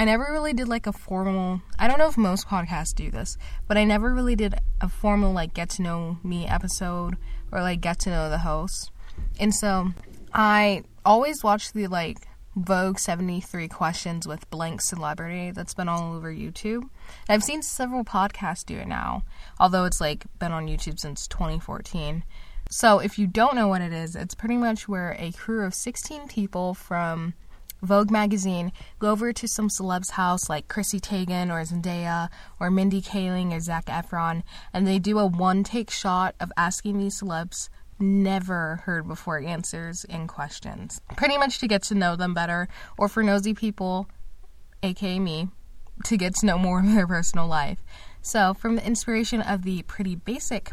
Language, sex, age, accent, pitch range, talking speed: English, female, 20-39, American, 170-210 Hz, 180 wpm